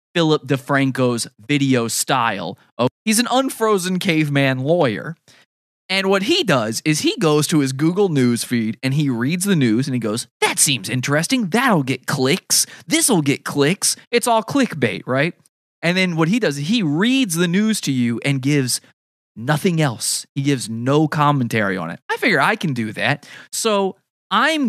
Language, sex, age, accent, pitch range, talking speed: English, male, 20-39, American, 130-195 Hz, 175 wpm